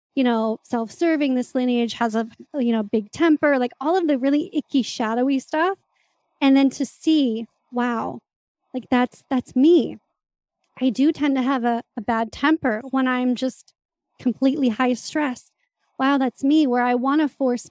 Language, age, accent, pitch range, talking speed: English, 30-49, American, 245-285 Hz, 175 wpm